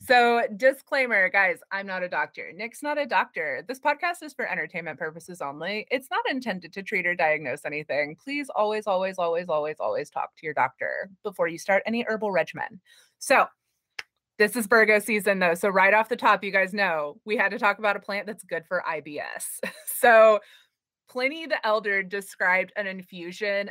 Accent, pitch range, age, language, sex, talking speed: American, 175-215 Hz, 20-39, English, female, 185 wpm